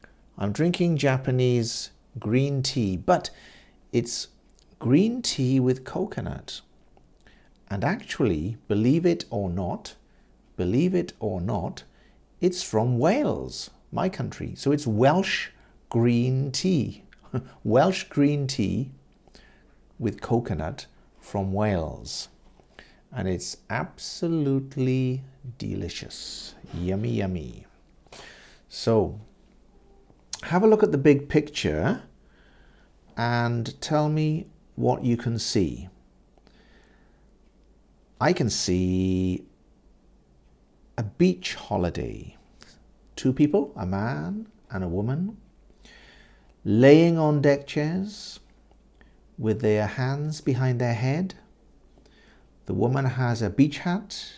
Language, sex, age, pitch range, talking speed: English, male, 50-69, 105-150 Hz, 95 wpm